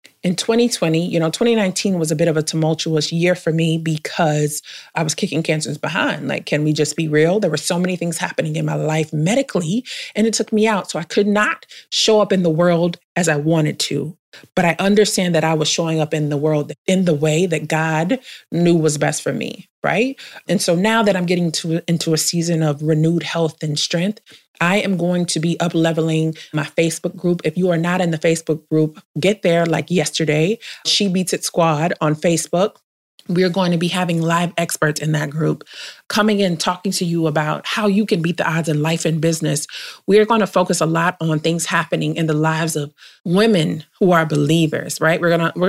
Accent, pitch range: American, 160-185 Hz